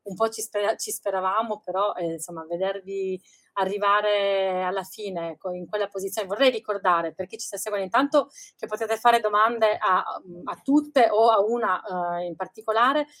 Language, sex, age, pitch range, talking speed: Italian, female, 30-49, 195-245 Hz, 160 wpm